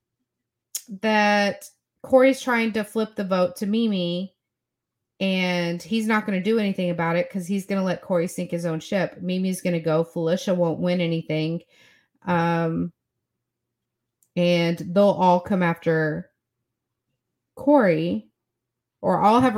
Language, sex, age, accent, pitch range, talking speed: English, female, 30-49, American, 165-200 Hz, 140 wpm